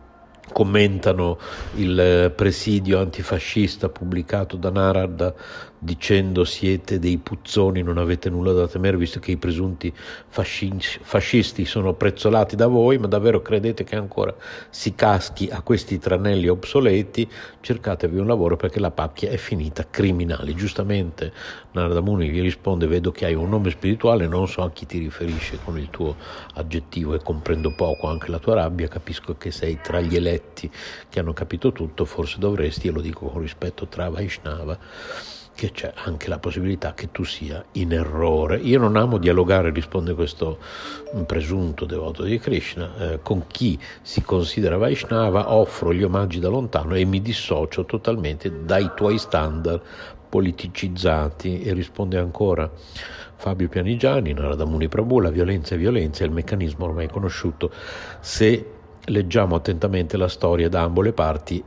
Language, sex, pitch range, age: Italian, male, 85-100 Hz, 50-69